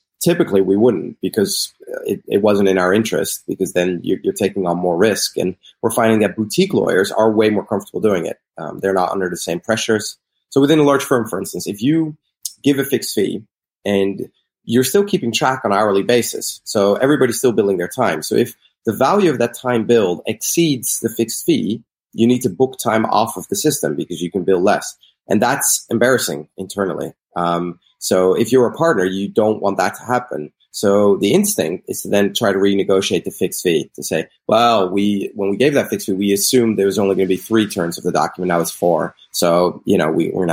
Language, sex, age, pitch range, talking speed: English, male, 30-49, 95-125 Hz, 220 wpm